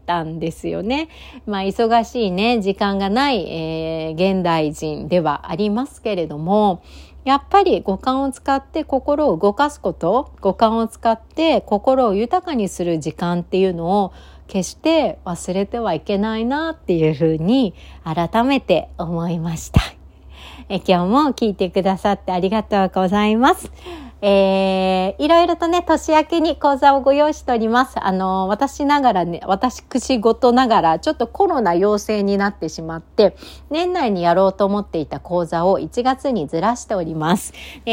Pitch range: 180-265 Hz